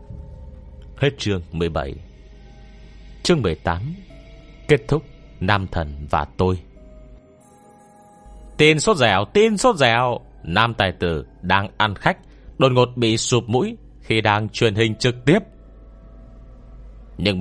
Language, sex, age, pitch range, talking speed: Vietnamese, male, 30-49, 90-125 Hz, 120 wpm